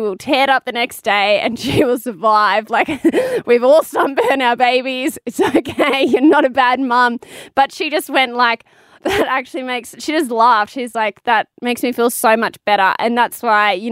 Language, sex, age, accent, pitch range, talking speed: English, female, 20-39, Australian, 200-240 Hz, 205 wpm